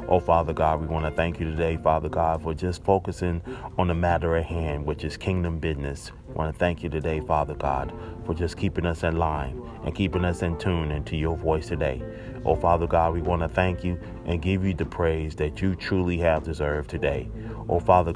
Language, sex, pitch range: English, male, 80-90 Hz